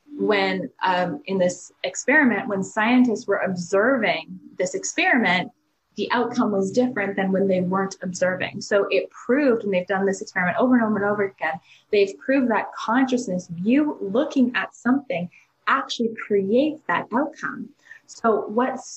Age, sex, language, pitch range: 20-39, female, English, 200-240 Hz